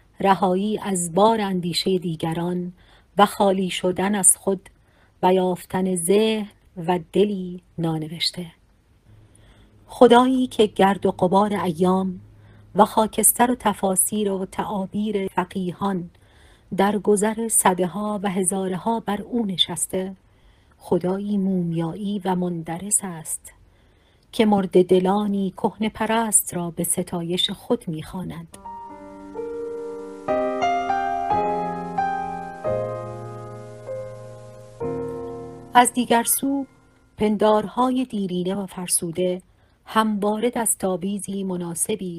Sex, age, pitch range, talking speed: female, 40-59, 170-210 Hz, 90 wpm